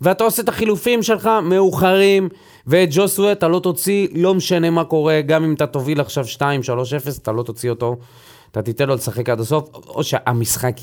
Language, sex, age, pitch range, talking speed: Hebrew, male, 30-49, 120-185 Hz, 185 wpm